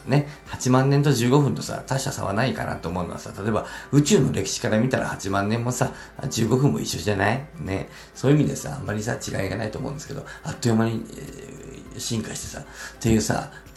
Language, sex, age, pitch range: Japanese, male, 50-69, 105-140 Hz